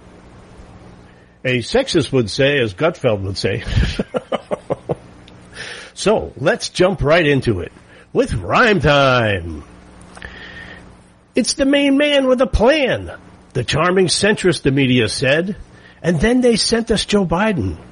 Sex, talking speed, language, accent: male, 125 wpm, English, American